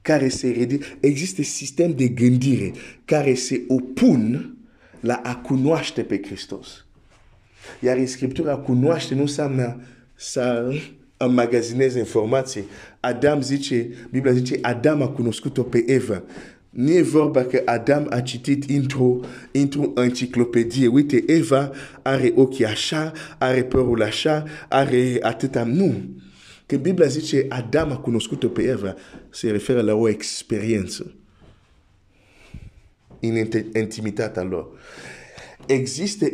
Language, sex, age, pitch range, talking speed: Romanian, male, 50-69, 115-140 Hz, 95 wpm